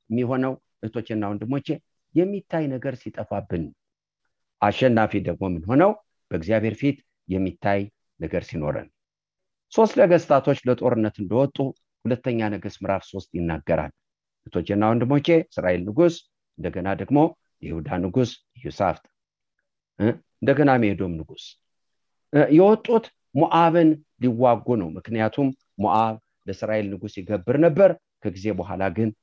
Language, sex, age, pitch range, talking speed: English, male, 50-69, 100-140 Hz, 60 wpm